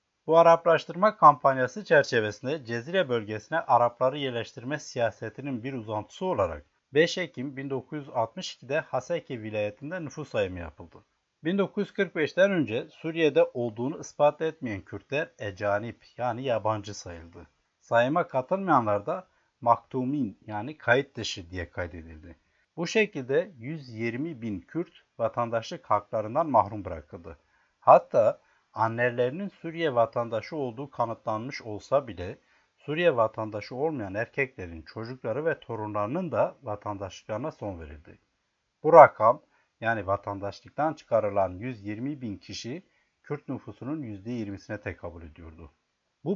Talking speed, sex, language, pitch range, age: 105 wpm, male, Turkish, 105-150 Hz, 60-79